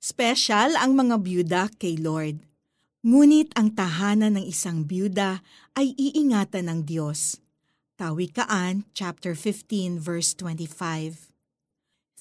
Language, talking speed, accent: Filipino, 105 wpm, native